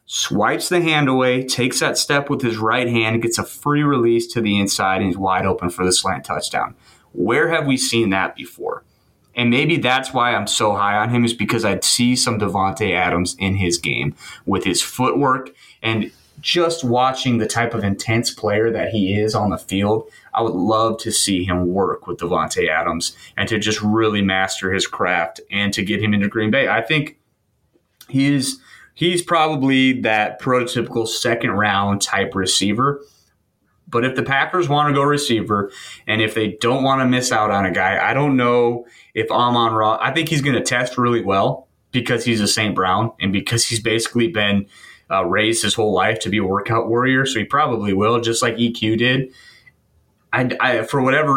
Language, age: English, 30-49